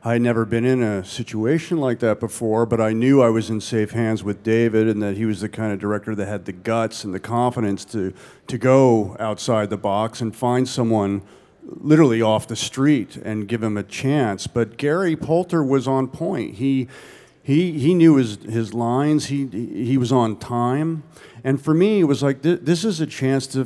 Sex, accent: male, American